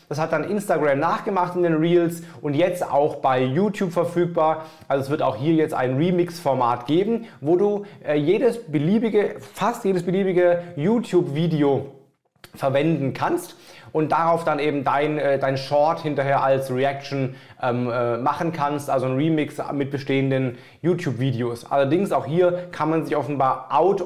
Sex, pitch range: male, 140-175 Hz